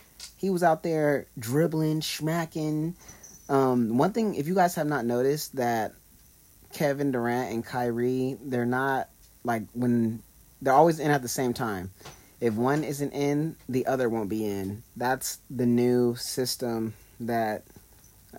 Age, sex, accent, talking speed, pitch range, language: 30-49, male, American, 145 wpm, 110-140 Hz, English